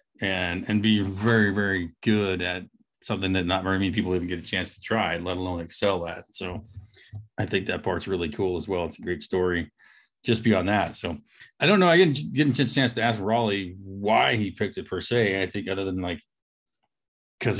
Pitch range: 90-115 Hz